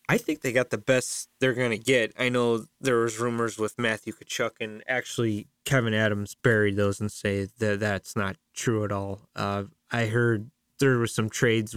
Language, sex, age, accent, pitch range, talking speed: English, male, 20-39, American, 110-135 Hz, 195 wpm